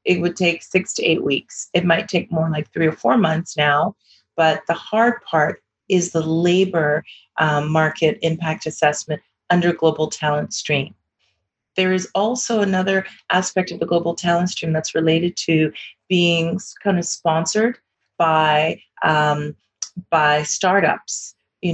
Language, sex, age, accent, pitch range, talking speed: English, female, 30-49, American, 155-180 Hz, 145 wpm